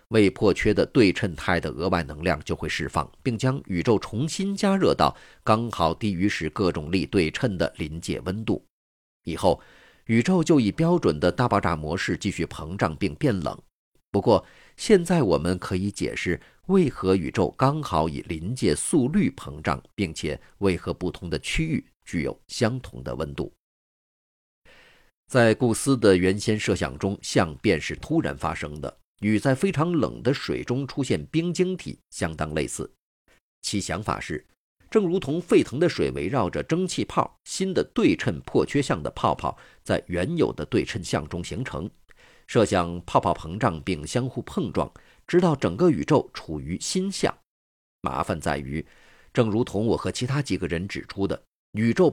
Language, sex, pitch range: Chinese, male, 85-135 Hz